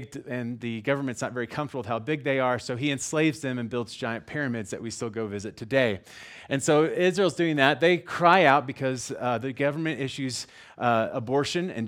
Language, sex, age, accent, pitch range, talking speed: English, male, 30-49, American, 115-150 Hz, 205 wpm